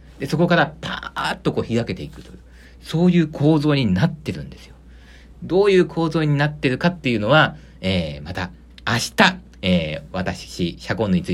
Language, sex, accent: Japanese, male, native